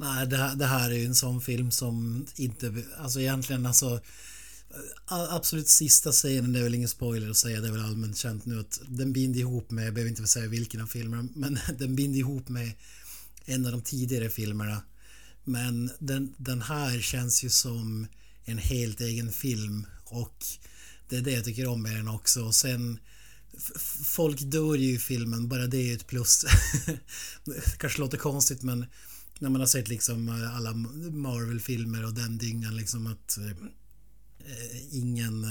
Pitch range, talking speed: 110-130 Hz, 175 wpm